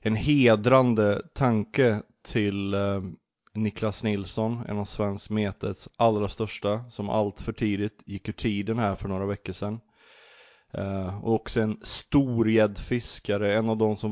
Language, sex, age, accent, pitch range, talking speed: Swedish, male, 20-39, native, 100-110 Hz, 135 wpm